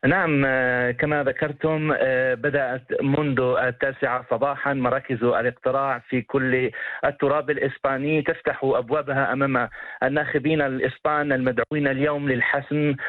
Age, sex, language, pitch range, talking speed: 40-59, male, English, 135-155 Hz, 95 wpm